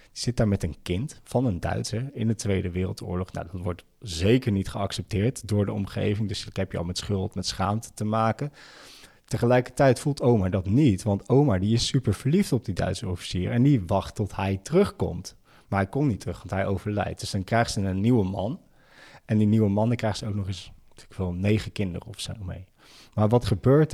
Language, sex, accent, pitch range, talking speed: Dutch, male, Dutch, 95-115 Hz, 220 wpm